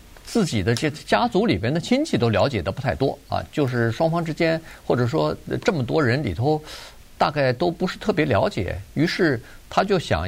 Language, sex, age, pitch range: Chinese, male, 50-69, 105-150 Hz